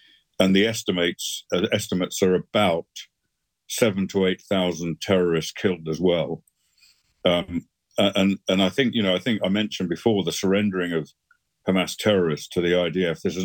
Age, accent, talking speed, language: 50-69, British, 165 wpm, English